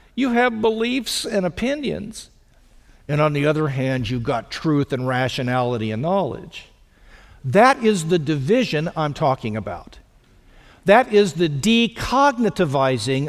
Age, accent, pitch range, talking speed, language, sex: 50-69, American, 145-205 Hz, 125 wpm, English, male